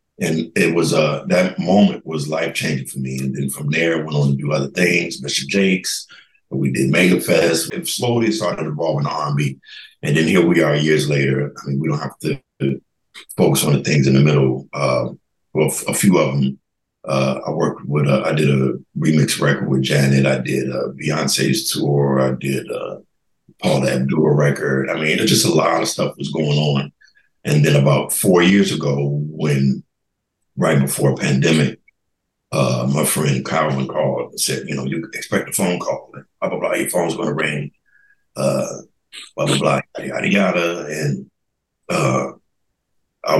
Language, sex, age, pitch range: English, male, 60-79, 65-75 Hz